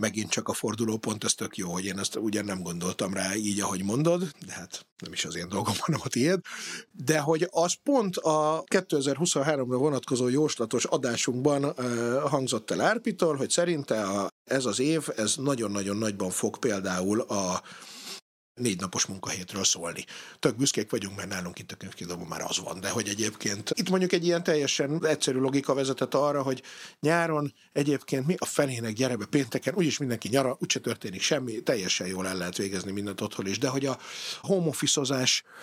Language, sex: Hungarian, male